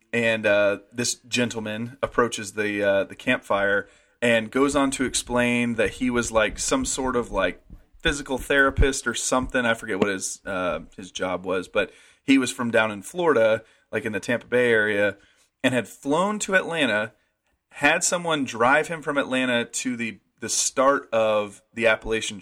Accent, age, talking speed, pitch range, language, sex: American, 30-49, 175 wpm, 110-135 Hz, English, male